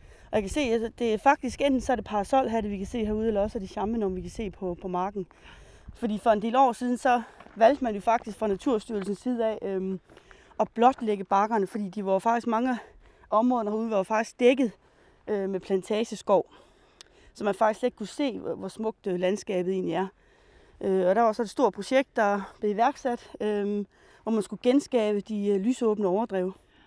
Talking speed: 200 wpm